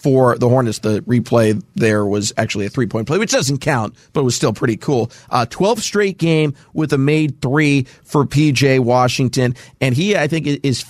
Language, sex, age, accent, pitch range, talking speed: English, male, 40-59, American, 125-150 Hz, 200 wpm